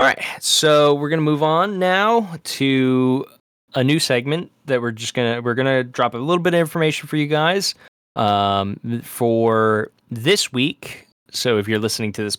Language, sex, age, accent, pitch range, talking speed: English, male, 10-29, American, 100-125 Hz, 180 wpm